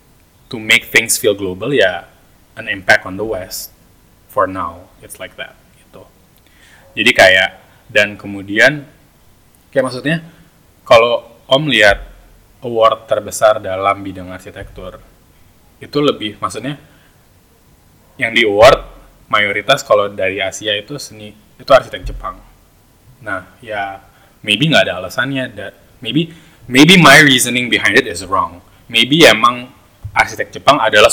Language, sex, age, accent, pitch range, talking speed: English, male, 20-39, Indonesian, 95-125 Hz, 130 wpm